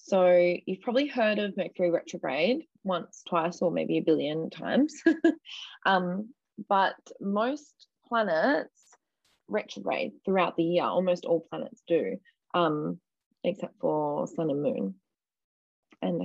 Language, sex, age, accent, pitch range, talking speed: English, female, 20-39, Australian, 165-215 Hz, 120 wpm